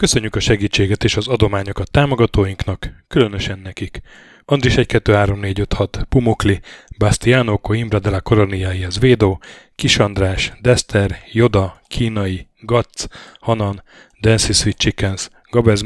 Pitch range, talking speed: 100-115 Hz, 105 wpm